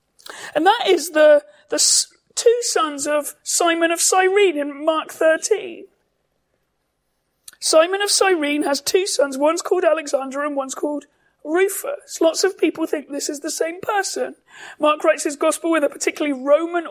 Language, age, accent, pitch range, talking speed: English, 40-59, British, 290-390 Hz, 155 wpm